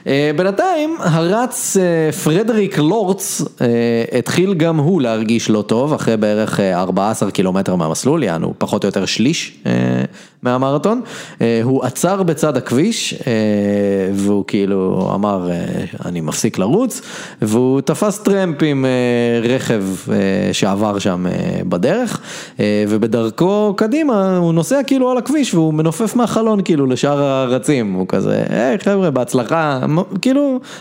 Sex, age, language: male, 30-49, Hebrew